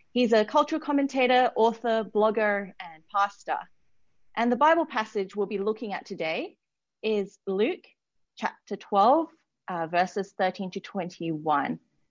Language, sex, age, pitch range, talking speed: English, female, 30-49, 180-235 Hz, 130 wpm